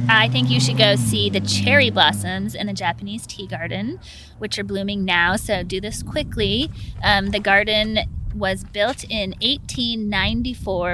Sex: female